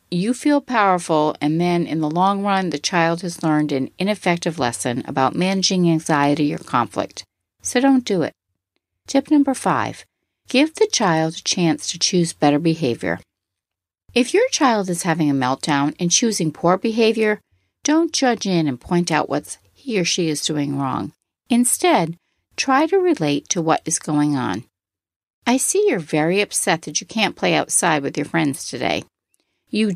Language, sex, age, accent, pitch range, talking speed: English, female, 50-69, American, 145-225 Hz, 170 wpm